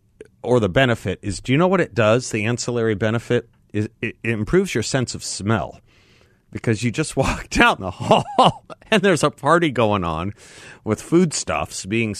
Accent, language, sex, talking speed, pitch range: American, English, male, 180 wpm, 100-125 Hz